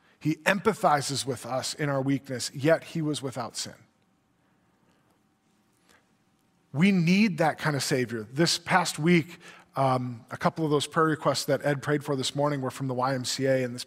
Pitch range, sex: 135-180 Hz, male